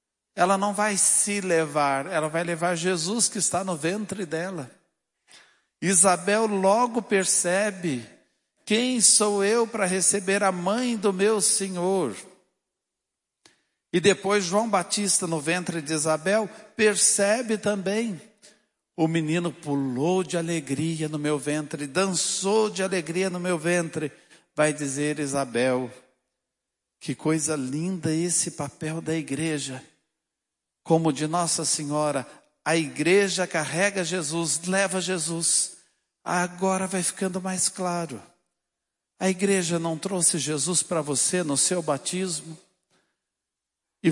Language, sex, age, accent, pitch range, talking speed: Portuguese, male, 60-79, Brazilian, 165-195 Hz, 120 wpm